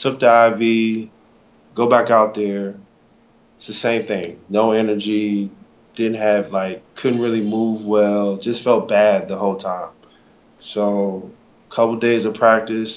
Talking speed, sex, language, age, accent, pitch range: 145 wpm, male, English, 20-39, American, 95-110 Hz